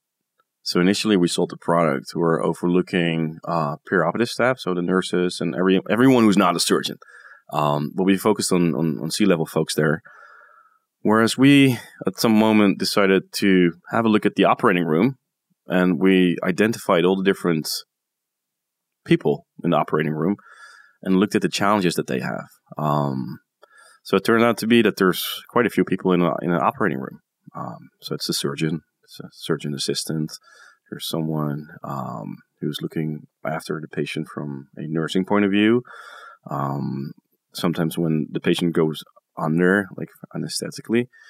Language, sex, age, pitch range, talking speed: English, male, 30-49, 85-110 Hz, 165 wpm